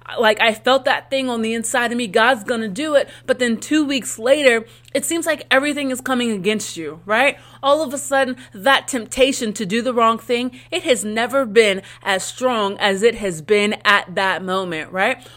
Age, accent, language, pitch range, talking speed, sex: 30-49, American, English, 215-260 Hz, 210 wpm, female